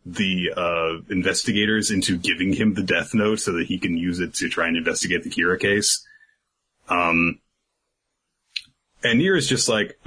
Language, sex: English, male